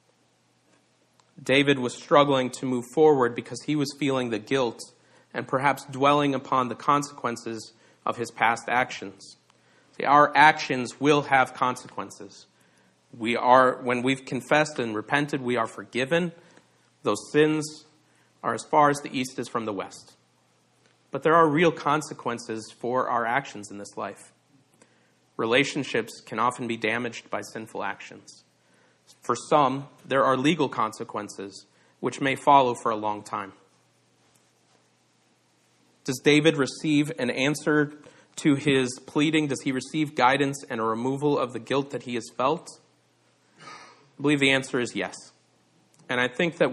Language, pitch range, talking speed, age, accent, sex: English, 120-145 Hz, 145 wpm, 40-59, American, male